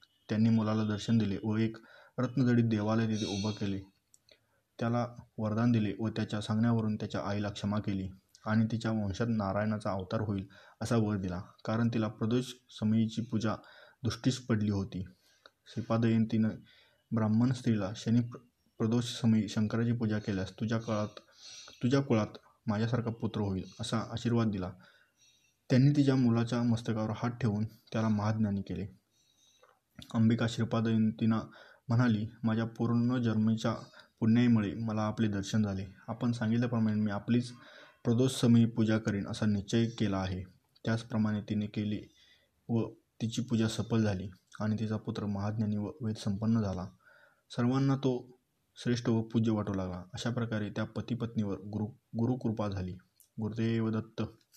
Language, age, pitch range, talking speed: Marathi, 20-39, 105-115 Hz, 135 wpm